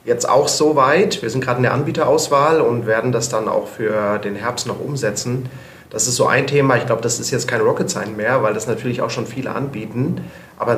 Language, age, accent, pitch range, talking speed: German, 40-59, German, 110-135 Hz, 230 wpm